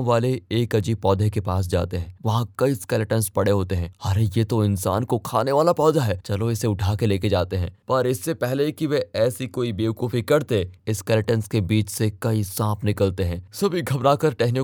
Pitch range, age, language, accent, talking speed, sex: 100-130 Hz, 20-39, Hindi, native, 165 wpm, male